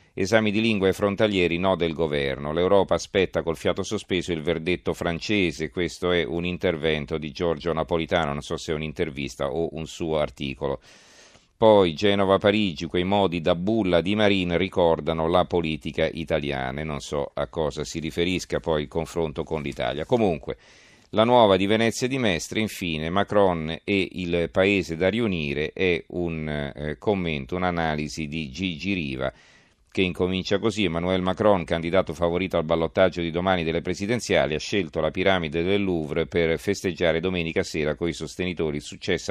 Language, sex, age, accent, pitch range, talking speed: Italian, male, 40-59, native, 80-95 Hz, 160 wpm